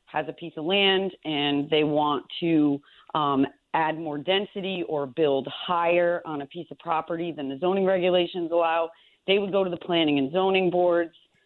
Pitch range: 150-175 Hz